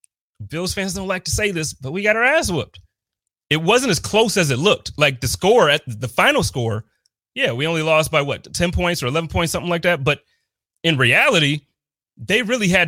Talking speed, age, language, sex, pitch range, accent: 220 wpm, 30-49, English, male, 125-165 Hz, American